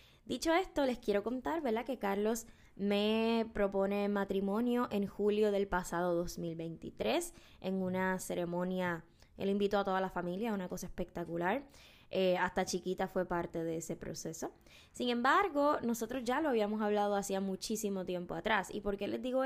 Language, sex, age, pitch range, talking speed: Spanish, female, 20-39, 185-225 Hz, 160 wpm